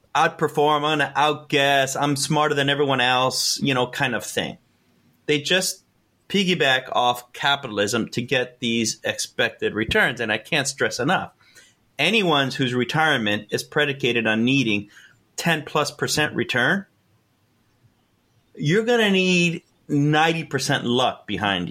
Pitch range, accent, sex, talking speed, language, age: 120-155 Hz, American, male, 135 wpm, English, 30-49